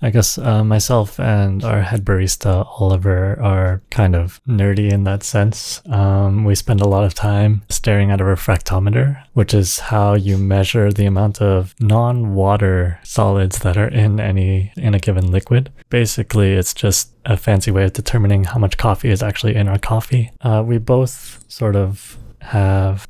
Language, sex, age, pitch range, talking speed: English, male, 20-39, 95-115 Hz, 175 wpm